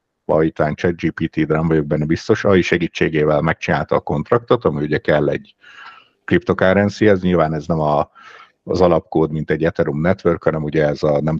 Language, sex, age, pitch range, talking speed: Hungarian, male, 50-69, 80-95 Hz, 170 wpm